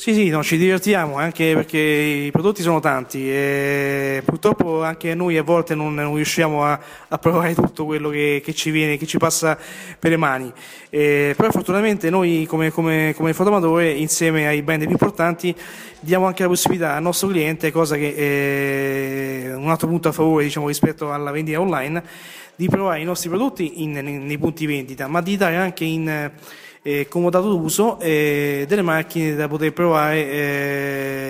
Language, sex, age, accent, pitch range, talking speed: Italian, male, 30-49, native, 150-170 Hz, 170 wpm